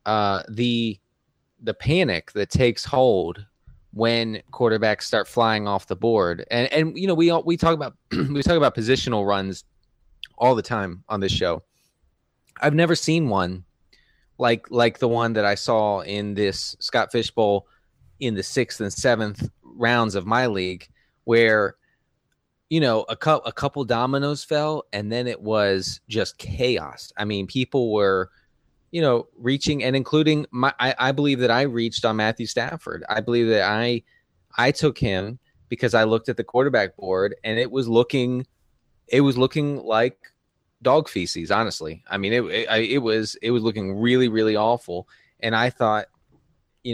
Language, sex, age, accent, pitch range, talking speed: English, male, 20-39, American, 105-130 Hz, 170 wpm